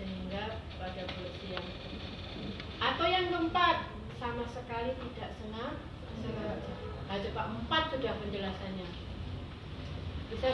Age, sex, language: 30-49, female, Indonesian